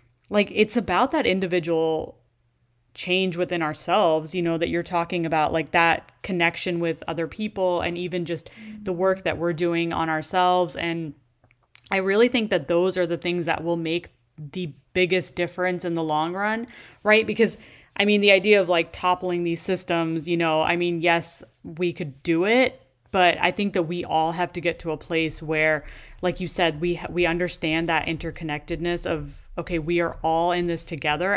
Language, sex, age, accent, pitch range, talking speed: English, female, 20-39, American, 160-180 Hz, 185 wpm